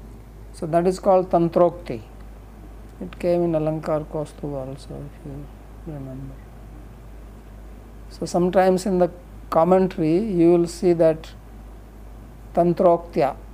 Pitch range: 120-175 Hz